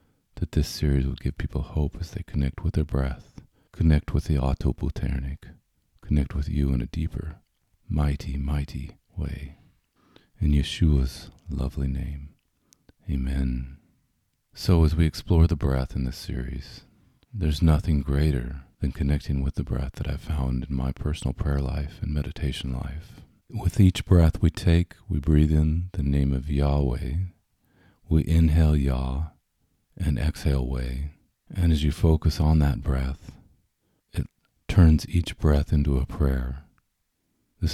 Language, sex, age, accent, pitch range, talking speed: English, male, 40-59, American, 70-85 Hz, 145 wpm